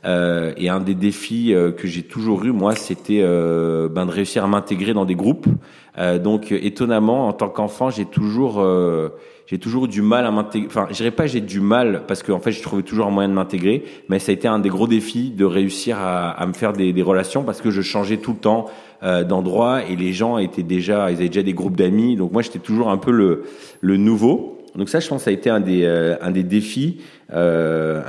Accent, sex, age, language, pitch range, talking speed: French, male, 30-49, French, 95-115 Hz, 245 wpm